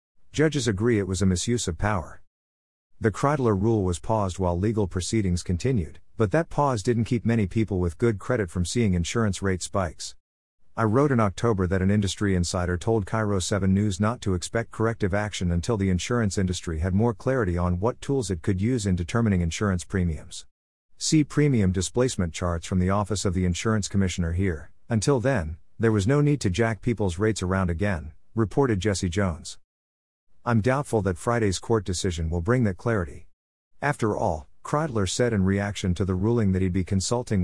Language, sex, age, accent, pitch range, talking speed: English, male, 50-69, American, 90-115 Hz, 185 wpm